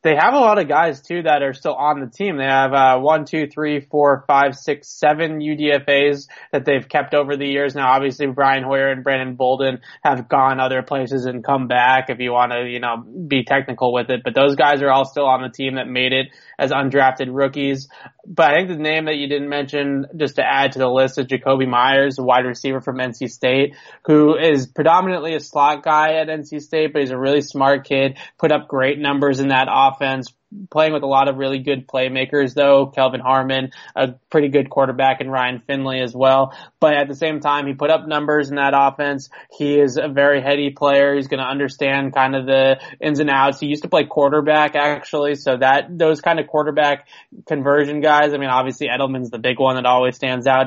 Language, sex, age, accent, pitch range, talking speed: English, male, 20-39, American, 130-145 Hz, 225 wpm